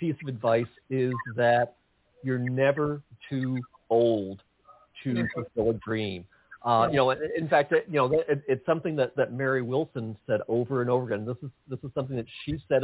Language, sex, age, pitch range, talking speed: English, male, 50-69, 120-150 Hz, 190 wpm